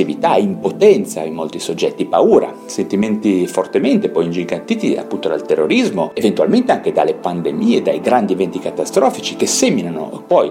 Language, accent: Italian, native